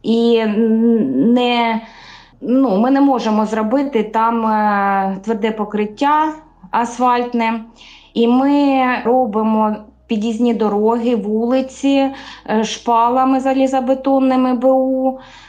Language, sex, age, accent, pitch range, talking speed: Ukrainian, female, 20-39, native, 205-250 Hz, 70 wpm